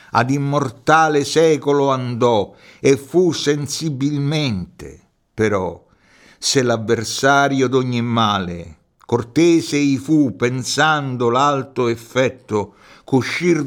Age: 60-79